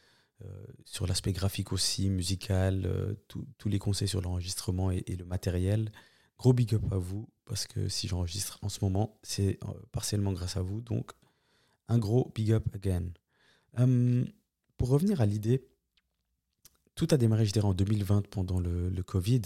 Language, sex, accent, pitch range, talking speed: French, male, French, 95-115 Hz, 165 wpm